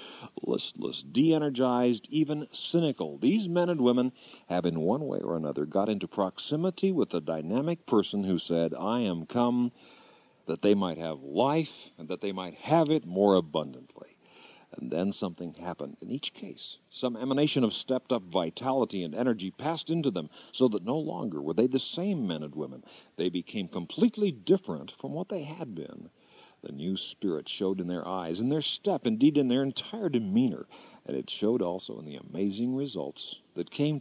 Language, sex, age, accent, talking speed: English, male, 50-69, American, 180 wpm